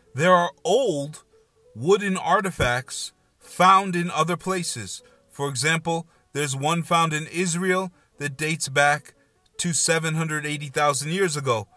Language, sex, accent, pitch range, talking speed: English, male, American, 130-175 Hz, 115 wpm